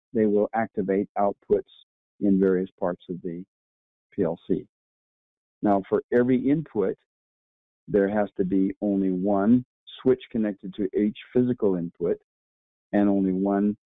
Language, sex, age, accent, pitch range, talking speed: English, male, 50-69, American, 95-105 Hz, 125 wpm